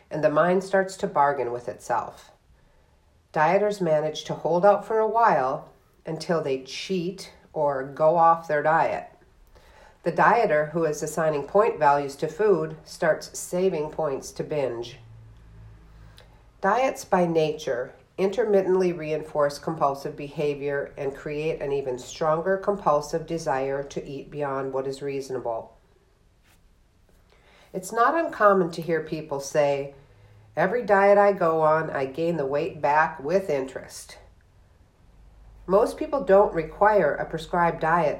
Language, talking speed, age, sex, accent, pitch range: English, 130 wpm, 50-69, female, American, 135-185 Hz